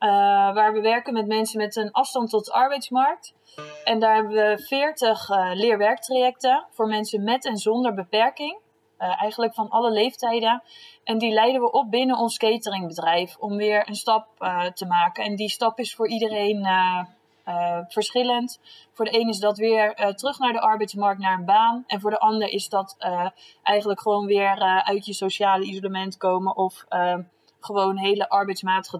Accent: Dutch